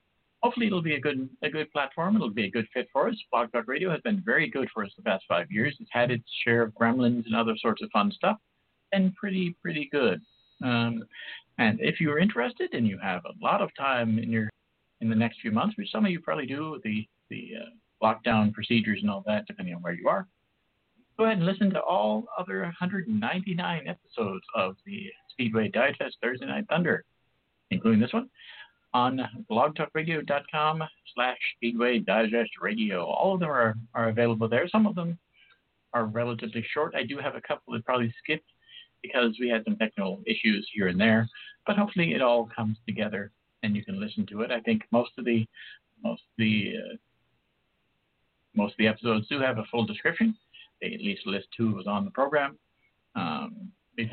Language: English